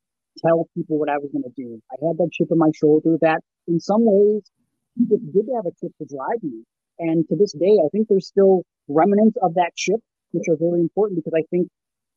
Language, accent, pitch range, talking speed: English, American, 150-170 Hz, 225 wpm